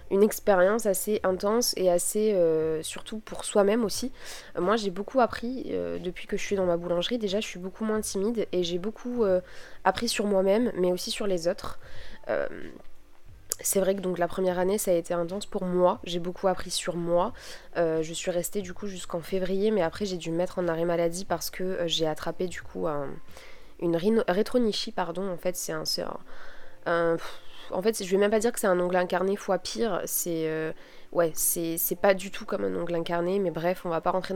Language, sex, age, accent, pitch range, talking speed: French, female, 20-39, French, 175-210 Hz, 230 wpm